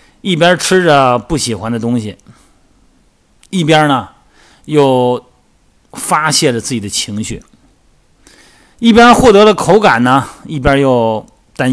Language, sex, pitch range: Chinese, male, 105-140 Hz